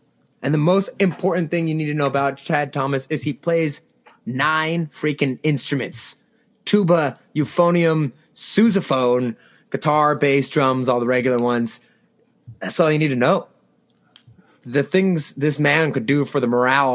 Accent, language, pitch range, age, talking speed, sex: American, English, 140-180 Hz, 20-39, 150 wpm, male